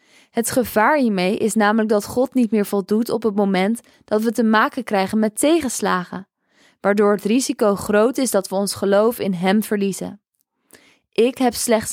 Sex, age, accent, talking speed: female, 20-39, Dutch, 175 wpm